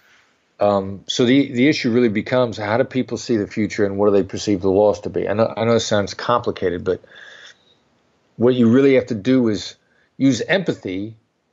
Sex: male